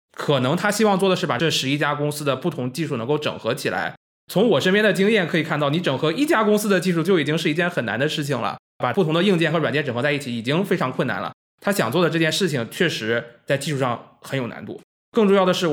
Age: 20-39